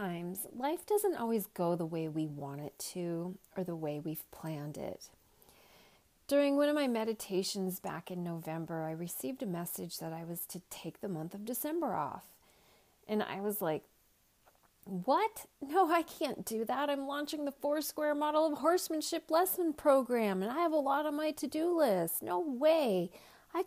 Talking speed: 175 wpm